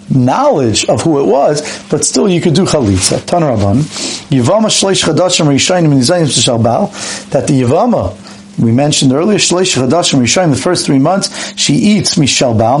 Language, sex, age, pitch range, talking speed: English, male, 40-59, 130-175 Hz, 165 wpm